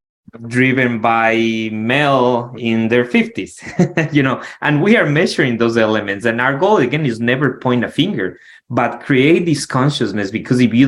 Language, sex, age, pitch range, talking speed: English, male, 20-39, 110-140 Hz, 165 wpm